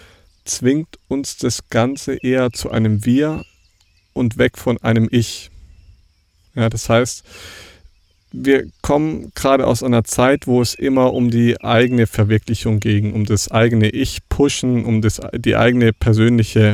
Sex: male